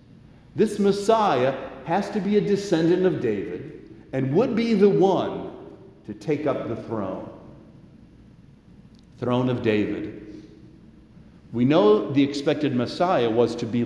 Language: English